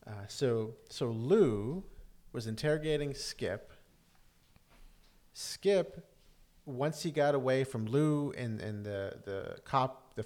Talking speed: 115 wpm